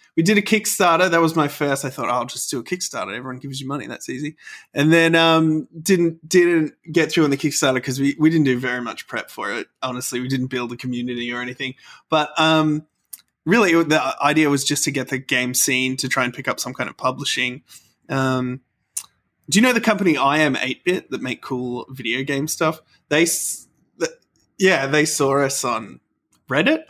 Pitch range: 130-160 Hz